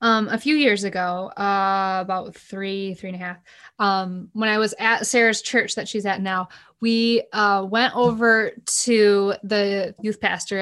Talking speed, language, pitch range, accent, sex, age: 175 wpm, English, 195-245 Hz, American, female, 20-39